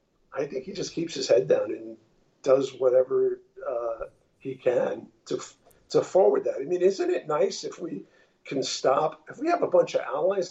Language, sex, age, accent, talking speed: English, male, 50-69, American, 195 wpm